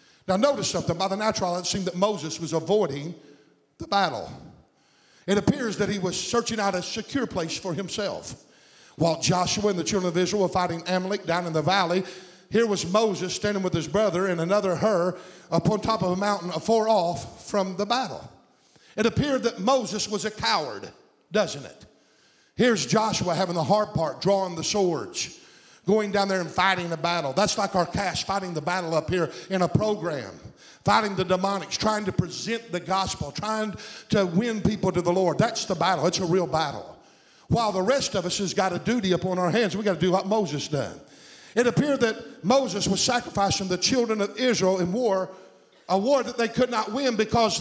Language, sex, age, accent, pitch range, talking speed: English, male, 50-69, American, 180-220 Hz, 200 wpm